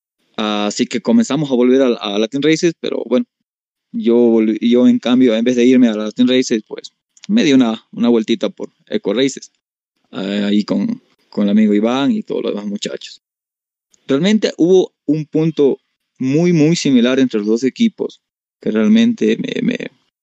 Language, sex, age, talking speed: Spanish, male, 20-39, 165 wpm